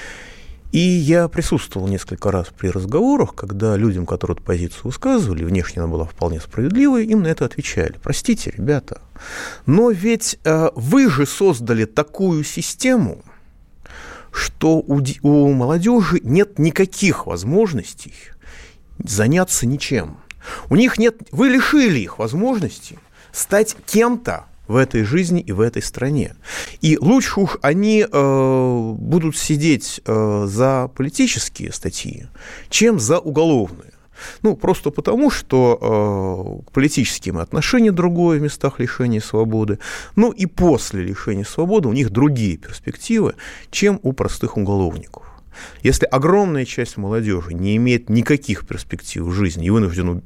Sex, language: male, Russian